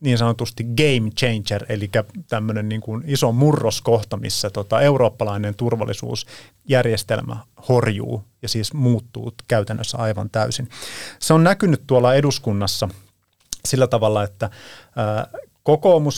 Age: 30-49